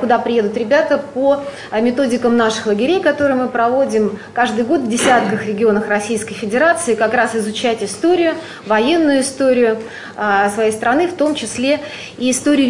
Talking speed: 140 wpm